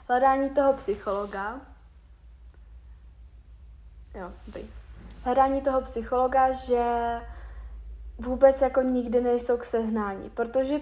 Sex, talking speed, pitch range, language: female, 85 wpm, 215-240 Hz, Czech